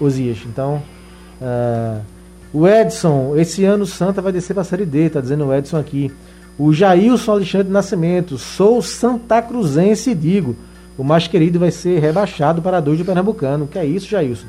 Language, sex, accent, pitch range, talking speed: Portuguese, male, Brazilian, 140-180 Hz, 170 wpm